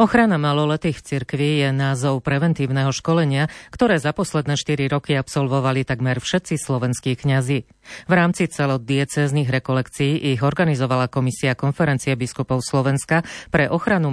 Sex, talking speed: female, 125 wpm